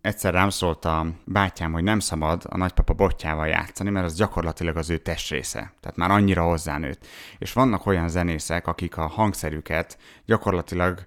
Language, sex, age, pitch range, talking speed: Hungarian, male, 30-49, 80-100 Hz, 165 wpm